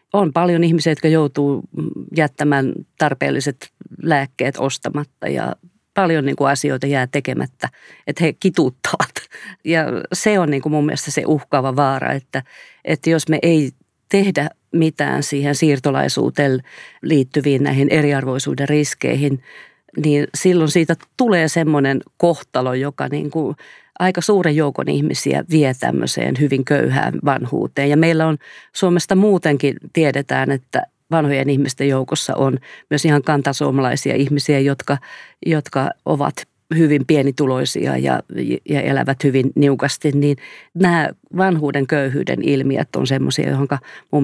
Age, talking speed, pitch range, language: 40-59, 120 wpm, 140-160 Hz, Finnish